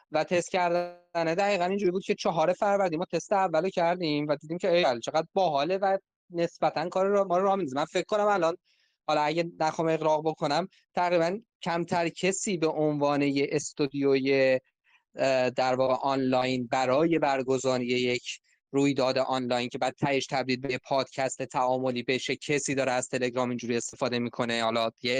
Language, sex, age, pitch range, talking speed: Persian, male, 20-39, 130-180 Hz, 160 wpm